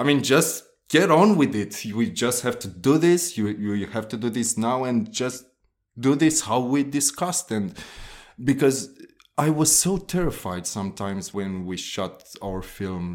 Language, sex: English, male